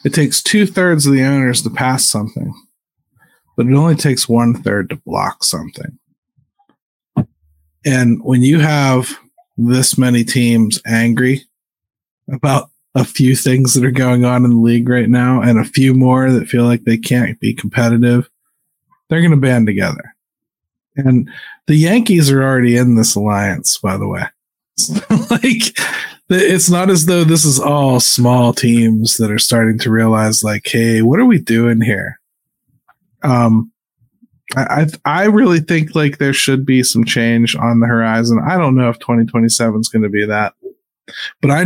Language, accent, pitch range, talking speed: English, American, 115-140 Hz, 165 wpm